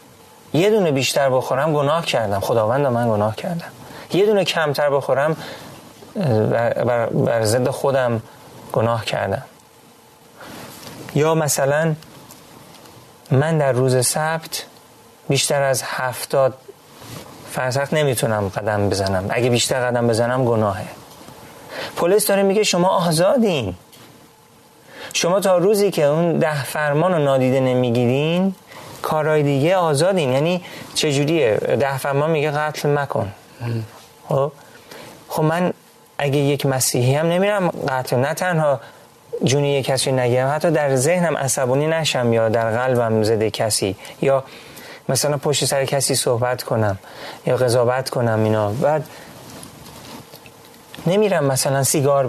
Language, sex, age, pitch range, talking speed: Persian, male, 30-49, 125-155 Hz, 115 wpm